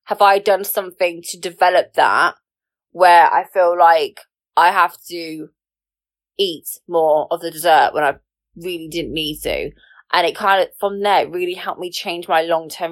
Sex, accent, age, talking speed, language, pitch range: female, British, 20-39, 170 wpm, English, 160-205 Hz